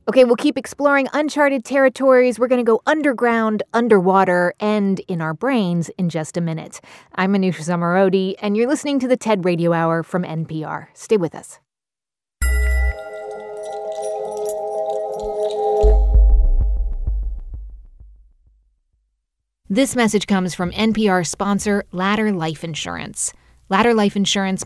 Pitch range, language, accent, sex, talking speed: 170-220 Hz, English, American, female, 115 wpm